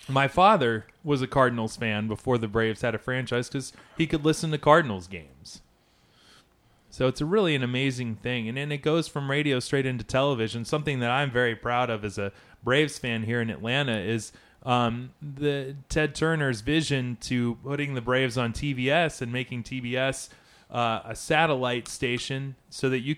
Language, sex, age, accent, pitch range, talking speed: English, male, 20-39, American, 115-140 Hz, 180 wpm